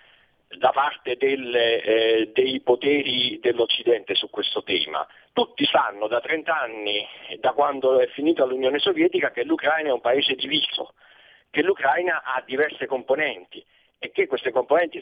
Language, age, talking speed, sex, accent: Italian, 40-59, 145 wpm, male, native